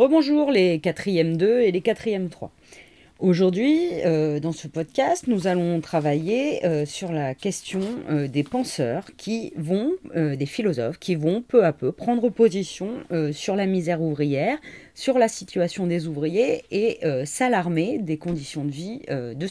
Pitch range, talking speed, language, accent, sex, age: 155-225 Hz, 170 wpm, French, French, female, 30-49